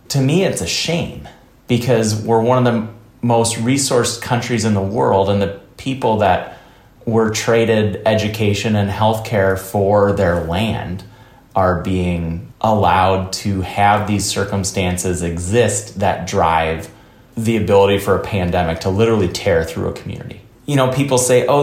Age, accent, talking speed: 30-49, American, 155 wpm